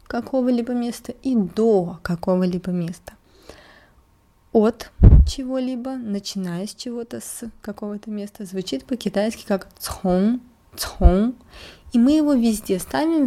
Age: 20-39